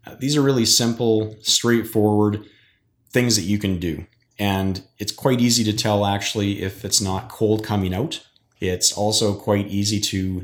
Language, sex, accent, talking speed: English, male, American, 160 wpm